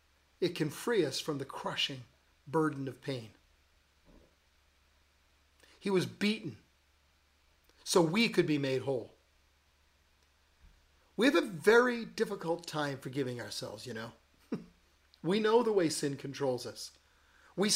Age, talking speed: 50-69, 125 wpm